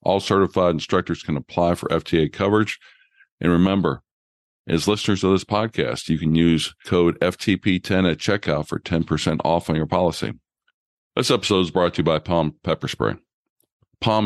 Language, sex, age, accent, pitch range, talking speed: English, male, 50-69, American, 80-100 Hz, 165 wpm